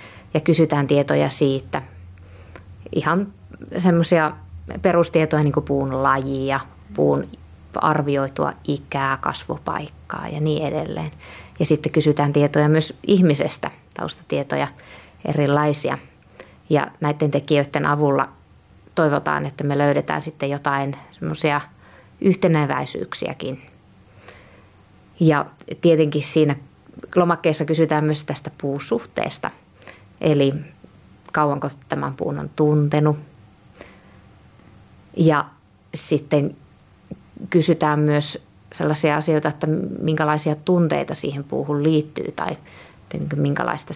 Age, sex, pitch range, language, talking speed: 20-39, female, 130-160 Hz, Finnish, 90 wpm